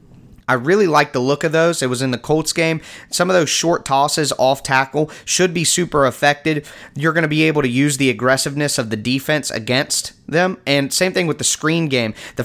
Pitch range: 125-155 Hz